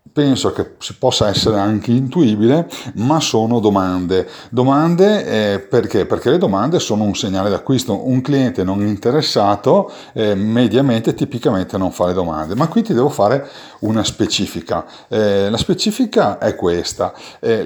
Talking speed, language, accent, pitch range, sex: 145 wpm, Italian, native, 105-155 Hz, male